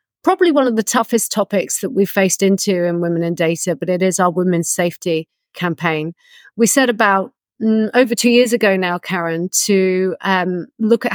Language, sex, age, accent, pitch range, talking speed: English, female, 40-59, British, 175-215 Hz, 190 wpm